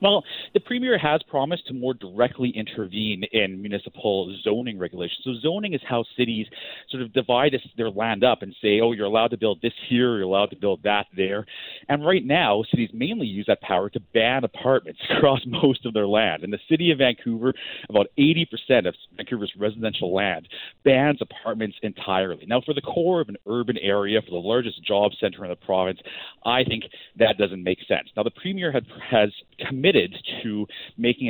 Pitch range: 105-135 Hz